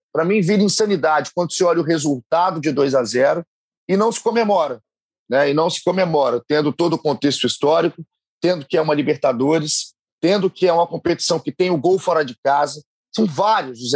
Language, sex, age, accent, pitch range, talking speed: Portuguese, male, 30-49, Brazilian, 150-205 Hz, 195 wpm